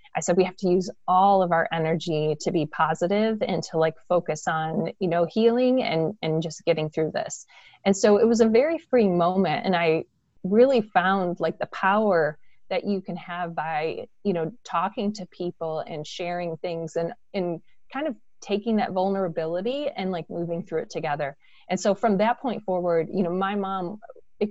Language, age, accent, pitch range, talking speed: English, 30-49, American, 165-210 Hz, 195 wpm